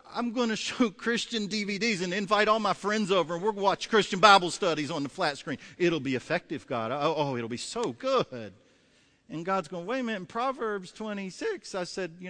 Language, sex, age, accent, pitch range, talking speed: English, male, 50-69, American, 130-220 Hz, 215 wpm